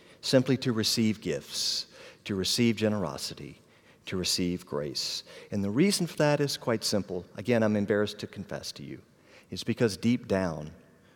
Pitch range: 100-130 Hz